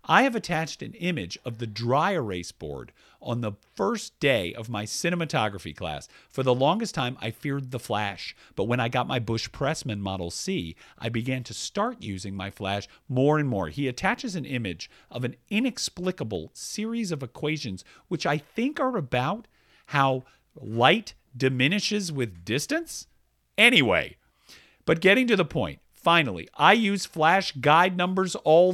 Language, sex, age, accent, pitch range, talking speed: English, male, 50-69, American, 120-180 Hz, 165 wpm